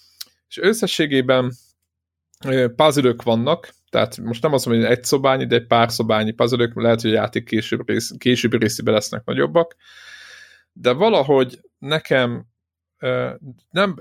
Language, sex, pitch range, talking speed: Hungarian, male, 120-150 Hz, 125 wpm